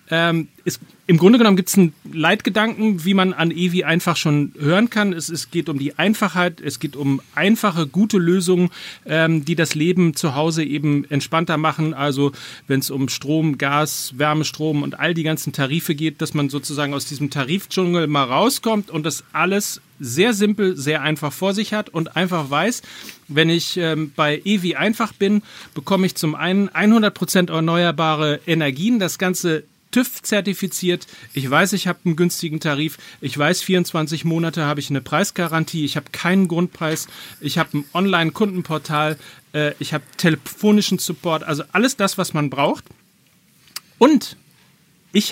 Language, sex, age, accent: German, male, 40-59, German